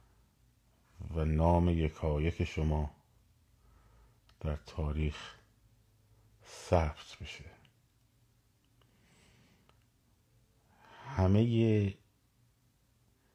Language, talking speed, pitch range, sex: Persian, 50 wpm, 90-115 Hz, male